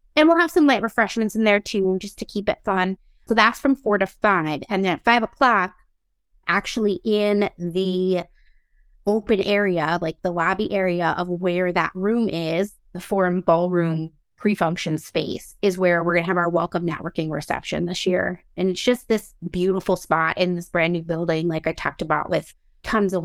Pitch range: 175-200 Hz